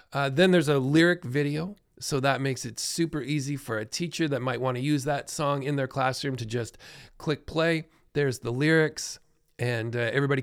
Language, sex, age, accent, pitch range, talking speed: English, male, 40-59, American, 125-155 Hz, 200 wpm